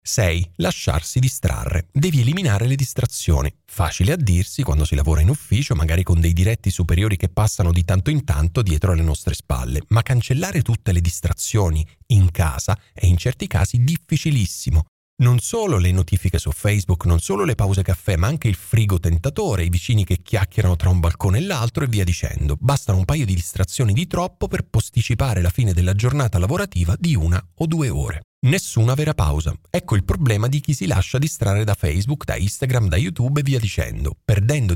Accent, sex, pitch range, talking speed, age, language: native, male, 90-130 Hz, 190 wpm, 40-59, Italian